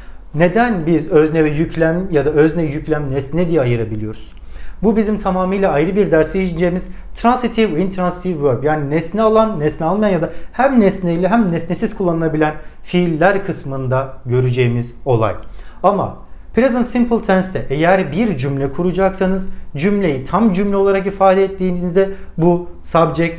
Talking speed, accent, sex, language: 140 wpm, Turkish, male, English